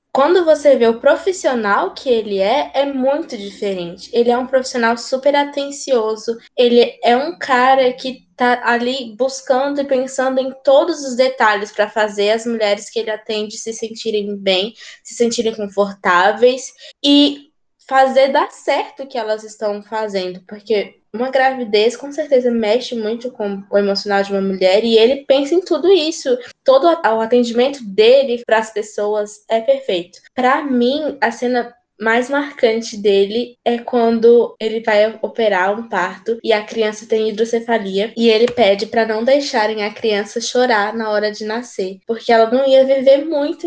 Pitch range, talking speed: 220-270 Hz, 165 wpm